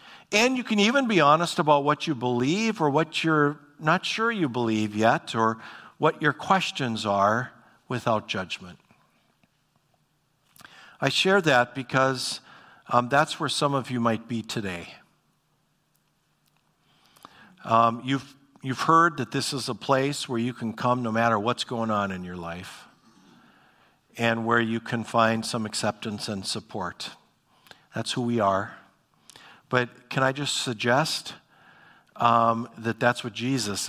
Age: 50-69